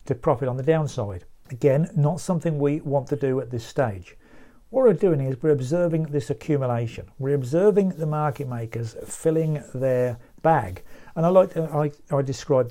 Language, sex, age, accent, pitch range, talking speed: English, male, 50-69, British, 125-160 Hz, 180 wpm